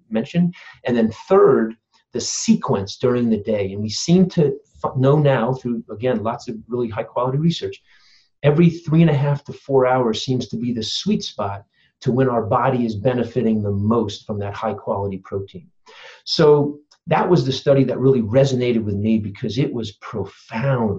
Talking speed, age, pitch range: 185 wpm, 40-59, 115-150 Hz